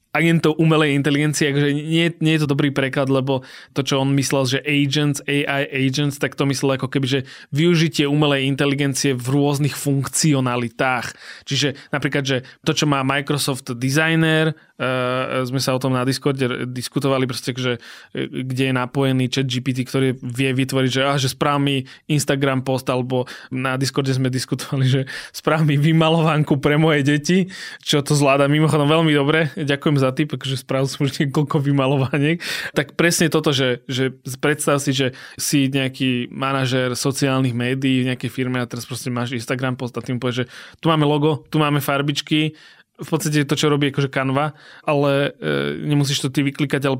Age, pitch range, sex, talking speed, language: 20-39, 130-150 Hz, male, 170 wpm, Slovak